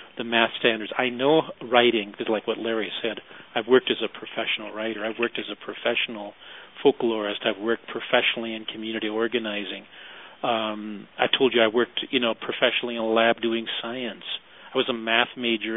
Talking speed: 185 wpm